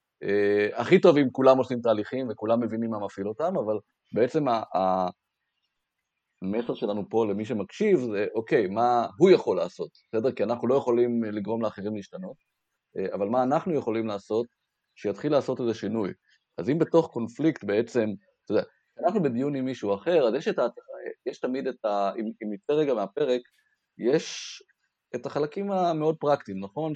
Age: 30-49